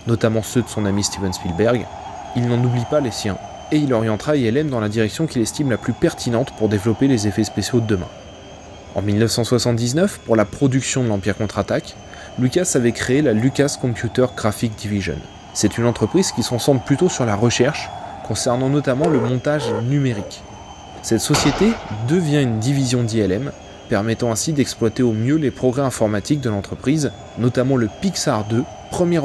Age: 20-39